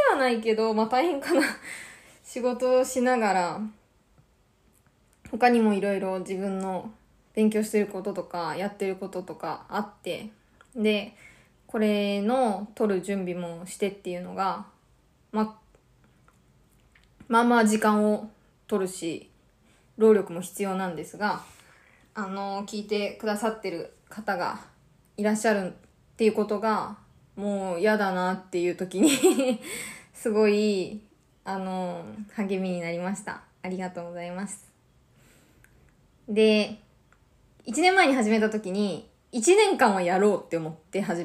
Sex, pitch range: female, 185-225 Hz